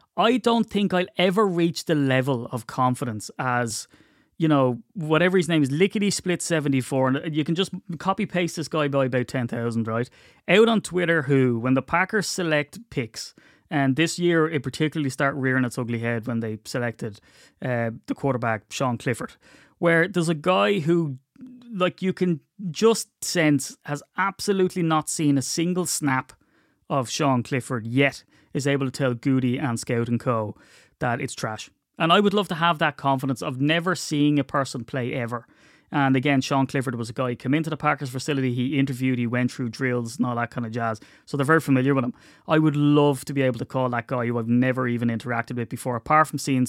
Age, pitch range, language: 30-49, 125-165 Hz, English